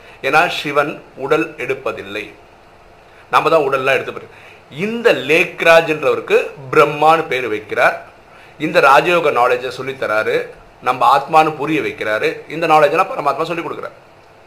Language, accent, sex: Tamil, native, male